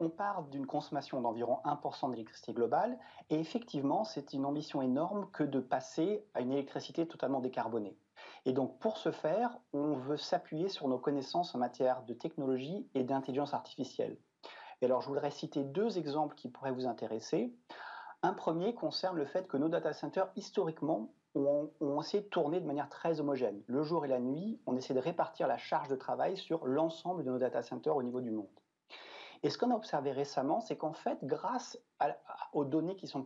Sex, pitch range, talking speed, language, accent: male, 135-180 Hz, 195 wpm, French, French